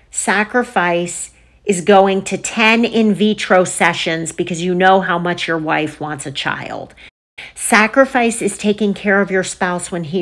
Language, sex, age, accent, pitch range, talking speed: English, female, 40-59, American, 170-210 Hz, 160 wpm